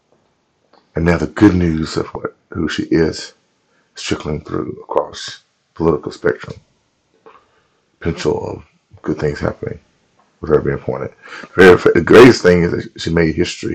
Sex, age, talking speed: male, 40-59, 155 wpm